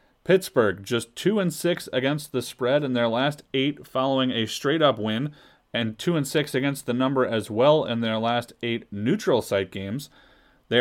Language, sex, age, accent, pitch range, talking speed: English, male, 30-49, American, 120-150 Hz, 190 wpm